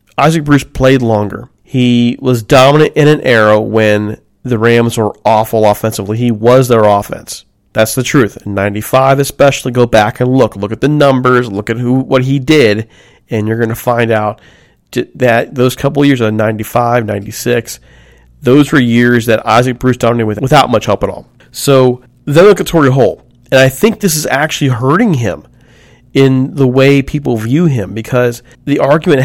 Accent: American